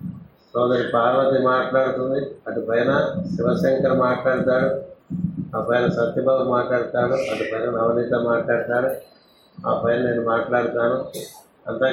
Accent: native